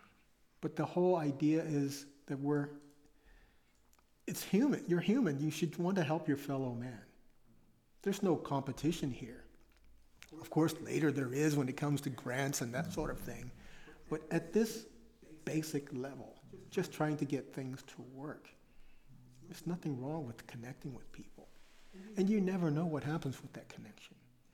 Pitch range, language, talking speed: 130-155 Hz, Czech, 160 wpm